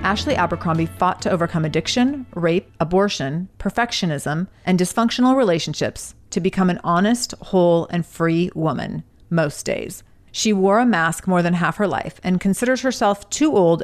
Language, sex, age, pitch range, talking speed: English, female, 30-49, 170-215 Hz, 155 wpm